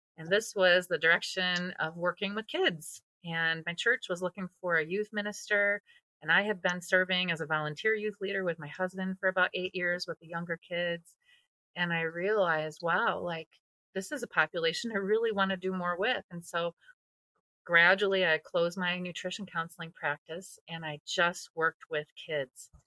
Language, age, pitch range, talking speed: English, 30-49, 165-210 Hz, 180 wpm